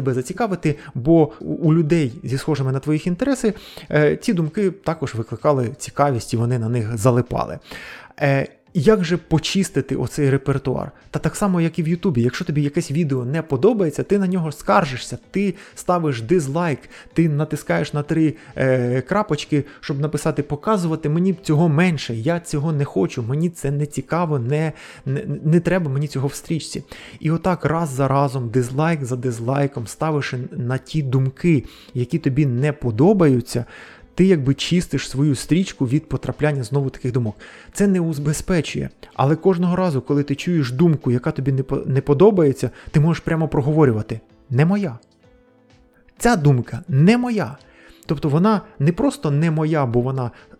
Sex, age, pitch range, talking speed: male, 20-39, 130-165 Hz, 155 wpm